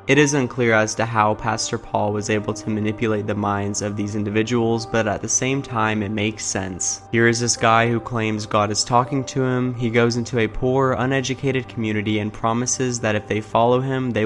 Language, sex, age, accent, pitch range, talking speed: English, male, 20-39, American, 105-120 Hz, 215 wpm